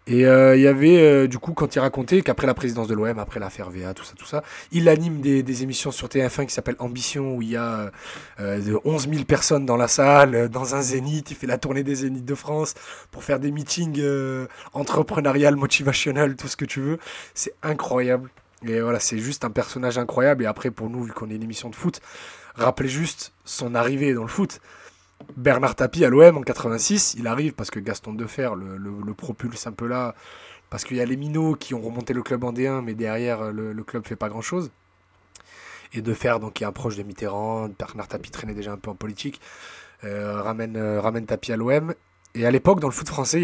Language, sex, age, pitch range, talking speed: French, male, 20-39, 110-140 Hz, 230 wpm